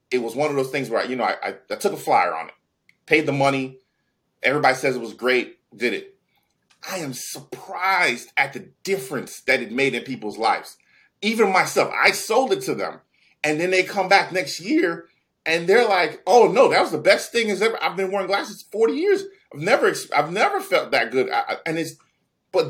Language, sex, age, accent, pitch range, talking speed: English, male, 30-49, American, 130-200 Hz, 215 wpm